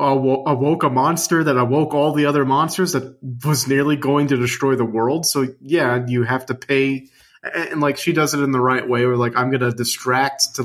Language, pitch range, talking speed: English, 125-165 Hz, 220 wpm